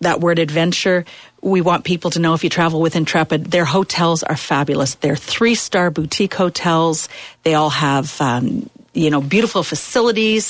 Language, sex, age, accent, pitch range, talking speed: English, female, 40-59, American, 155-190 Hz, 165 wpm